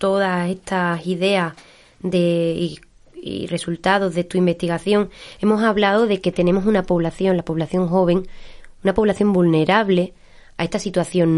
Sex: female